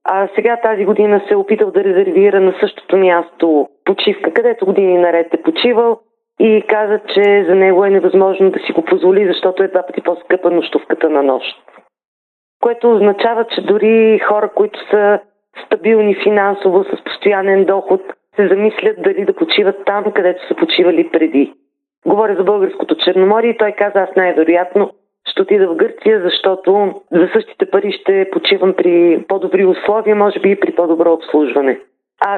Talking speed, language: 165 wpm, Bulgarian